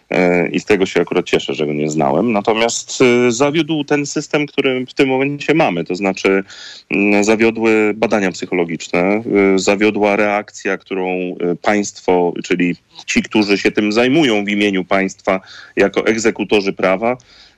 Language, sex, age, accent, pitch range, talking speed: Polish, male, 30-49, native, 95-110 Hz, 135 wpm